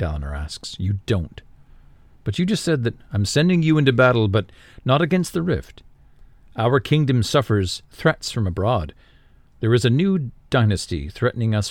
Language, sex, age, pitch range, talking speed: English, male, 40-59, 95-125 Hz, 165 wpm